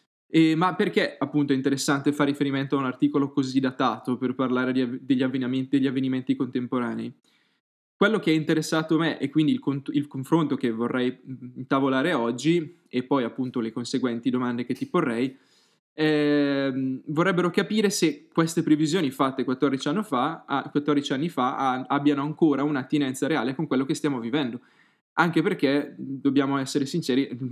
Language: Italian